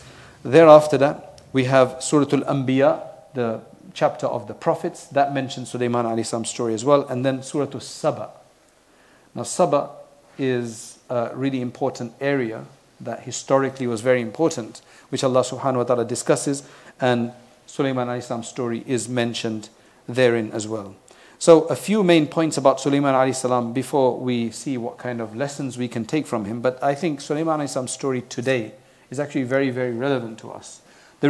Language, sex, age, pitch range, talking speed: English, male, 40-59, 120-145 Hz, 155 wpm